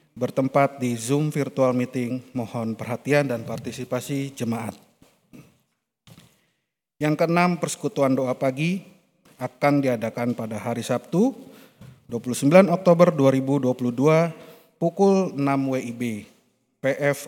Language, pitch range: Indonesian, 125-150 Hz